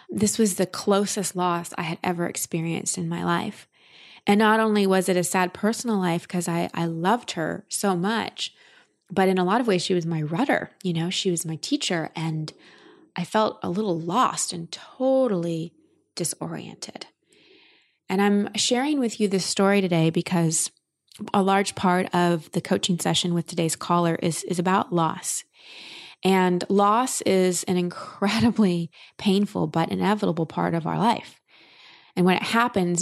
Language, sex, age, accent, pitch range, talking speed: English, female, 20-39, American, 175-205 Hz, 165 wpm